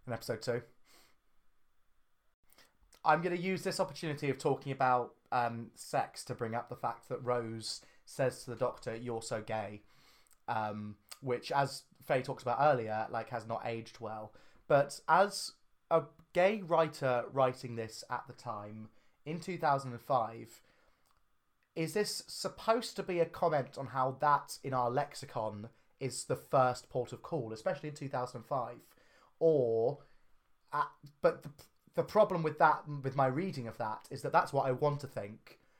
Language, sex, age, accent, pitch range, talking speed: English, male, 30-49, British, 125-165 Hz, 160 wpm